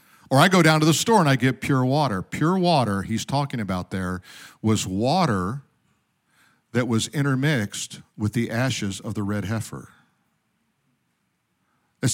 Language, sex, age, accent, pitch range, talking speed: English, male, 50-69, American, 115-155 Hz, 155 wpm